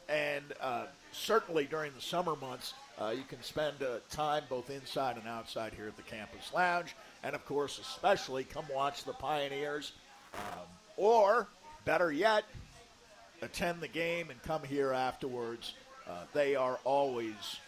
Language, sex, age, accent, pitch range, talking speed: English, male, 50-69, American, 130-170 Hz, 155 wpm